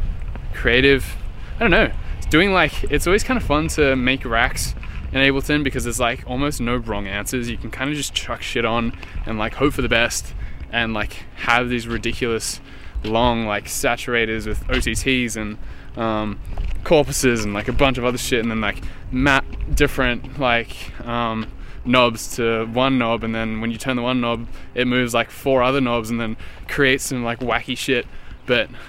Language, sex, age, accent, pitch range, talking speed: English, male, 20-39, Australian, 110-130 Hz, 190 wpm